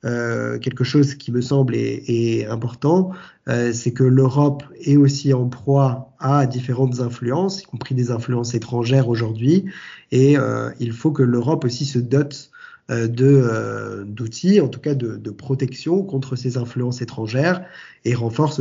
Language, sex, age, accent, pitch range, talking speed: French, male, 20-39, French, 120-145 Hz, 165 wpm